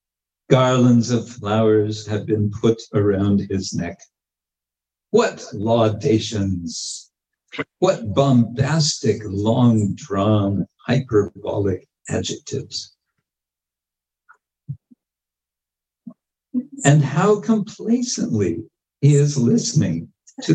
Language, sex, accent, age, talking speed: English, male, American, 60-79, 65 wpm